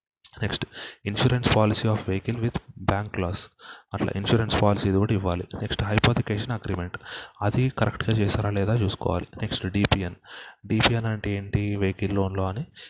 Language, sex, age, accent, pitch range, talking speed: Telugu, male, 30-49, native, 100-110 Hz, 110 wpm